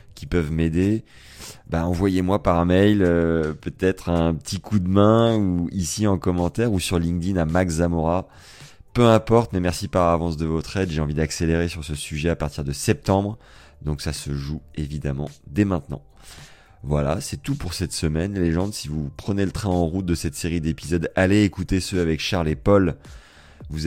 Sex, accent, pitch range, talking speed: male, French, 75-95 Hz, 195 wpm